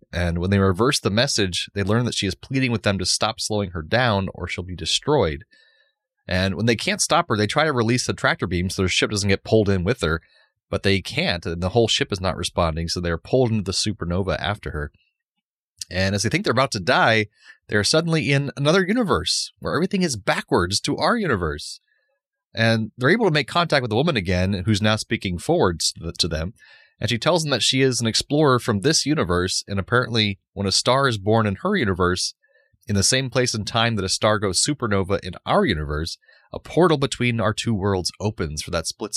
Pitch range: 90-125 Hz